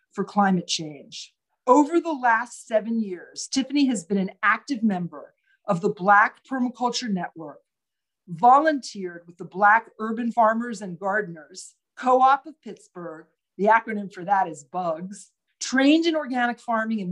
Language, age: English, 50-69